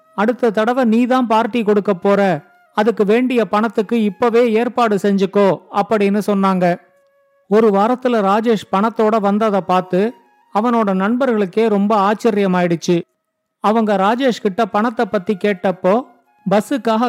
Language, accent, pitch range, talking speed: Tamil, native, 200-235 Hz, 110 wpm